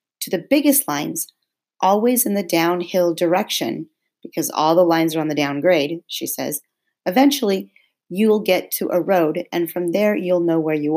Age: 40-59